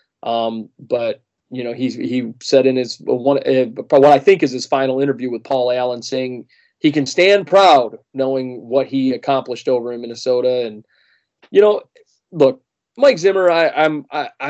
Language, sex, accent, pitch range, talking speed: English, male, American, 125-150 Hz, 175 wpm